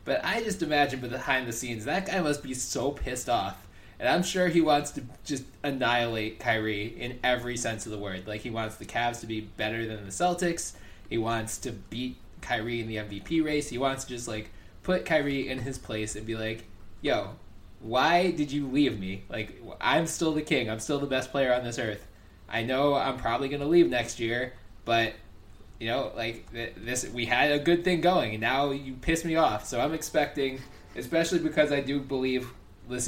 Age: 20-39